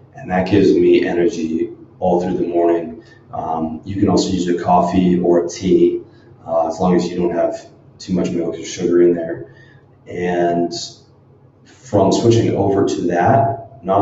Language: English